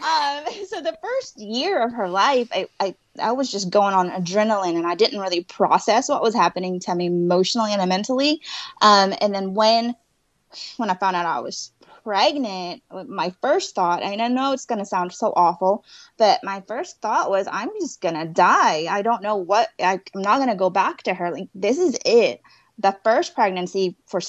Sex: female